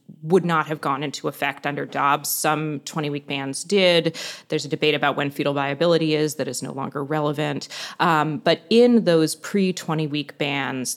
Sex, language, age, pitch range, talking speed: female, English, 20-39, 145-170 Hz, 170 wpm